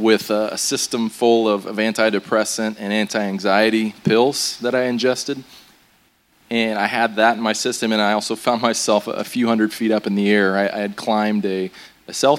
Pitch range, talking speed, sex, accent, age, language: 100-110 Hz, 195 wpm, male, American, 20-39, English